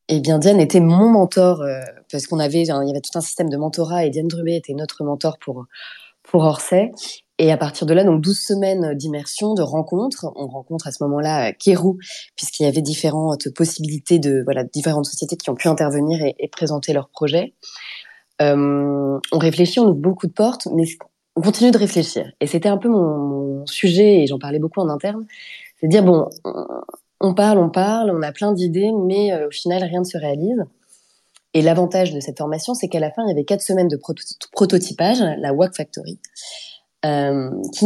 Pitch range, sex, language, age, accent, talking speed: 150-190 Hz, female, English, 20-39, French, 205 wpm